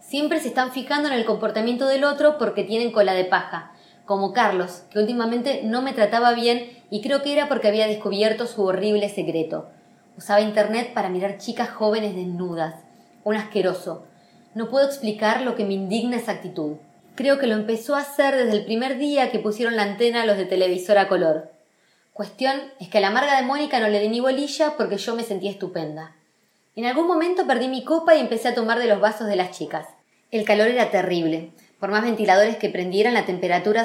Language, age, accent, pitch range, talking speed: Spanish, 20-39, Argentinian, 195-240 Hz, 205 wpm